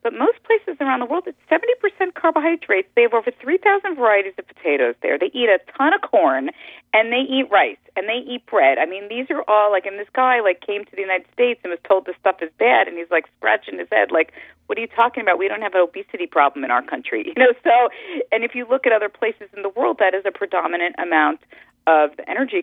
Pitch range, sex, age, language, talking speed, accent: 170-245 Hz, female, 40-59, English, 250 wpm, American